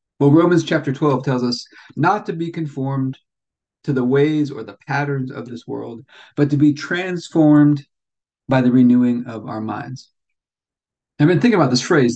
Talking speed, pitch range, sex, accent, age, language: 175 wpm, 120-145 Hz, male, American, 40-59, English